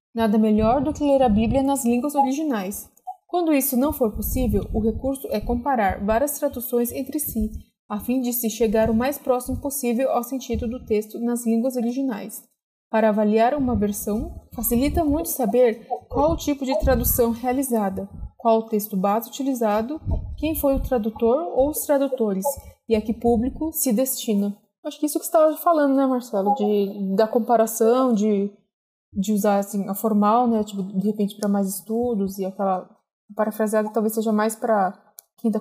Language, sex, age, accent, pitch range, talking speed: Portuguese, female, 20-39, Brazilian, 205-255 Hz, 175 wpm